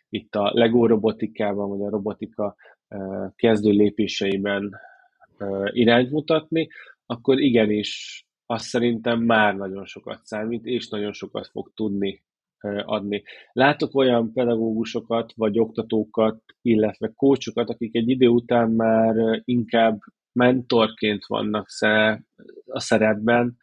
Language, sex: Hungarian, male